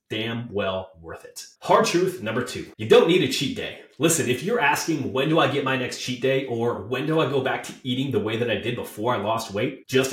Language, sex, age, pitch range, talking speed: English, male, 30-49, 115-155 Hz, 260 wpm